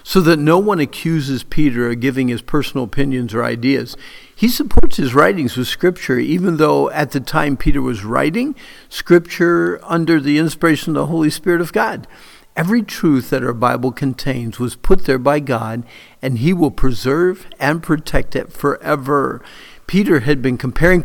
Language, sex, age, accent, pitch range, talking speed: English, male, 50-69, American, 125-165 Hz, 170 wpm